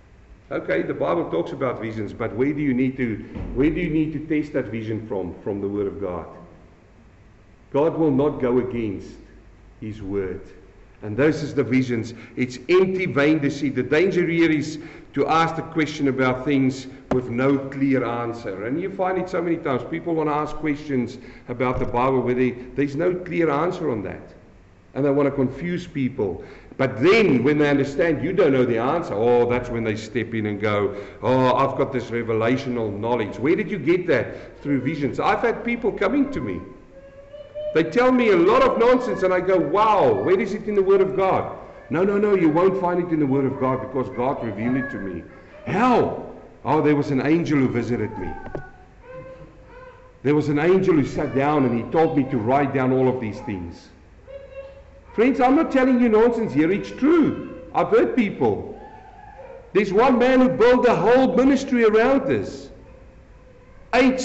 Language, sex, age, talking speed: English, male, 50-69, 195 wpm